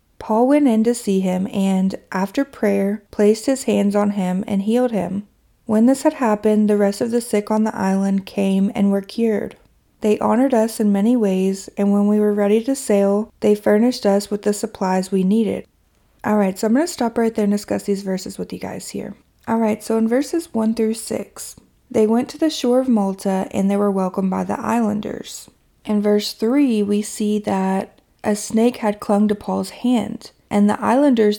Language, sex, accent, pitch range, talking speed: English, female, American, 195-225 Hz, 205 wpm